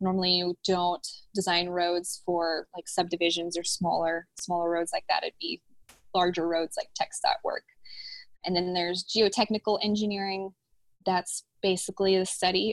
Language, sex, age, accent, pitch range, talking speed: English, female, 10-29, American, 175-205 Hz, 140 wpm